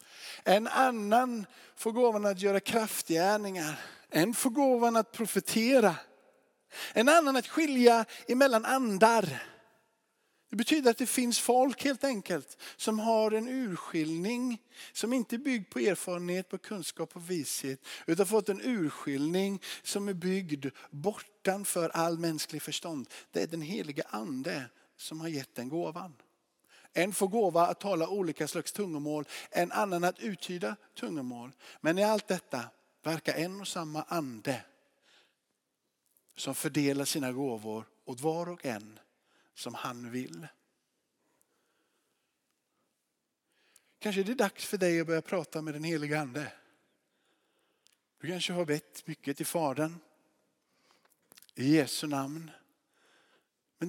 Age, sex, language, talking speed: 50-69, male, Swedish, 130 wpm